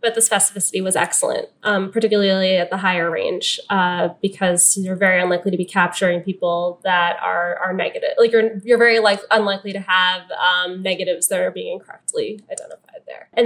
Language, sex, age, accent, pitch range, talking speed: English, female, 10-29, American, 175-205 Hz, 185 wpm